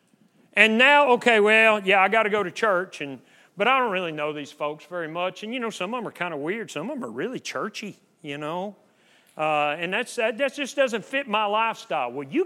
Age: 40-59